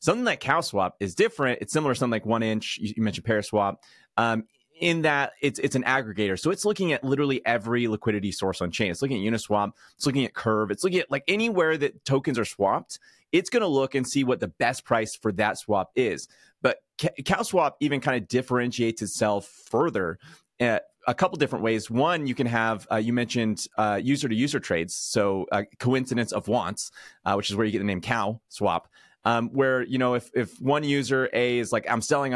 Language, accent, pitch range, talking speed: English, American, 110-140 Hz, 210 wpm